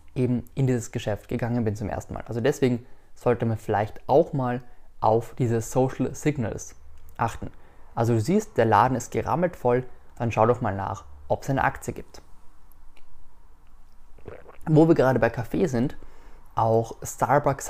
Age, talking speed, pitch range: 20-39, 160 wpm, 110-135 Hz